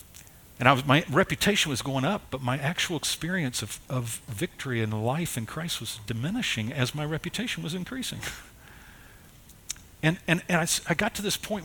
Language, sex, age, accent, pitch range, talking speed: English, male, 50-69, American, 110-140 Hz, 180 wpm